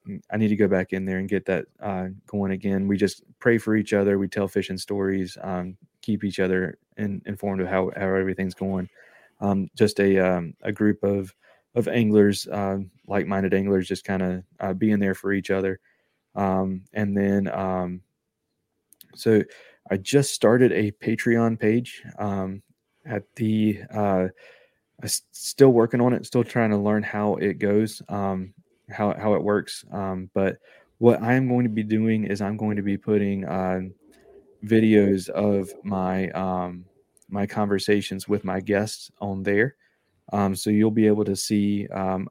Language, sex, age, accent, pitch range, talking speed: English, male, 20-39, American, 95-105 Hz, 170 wpm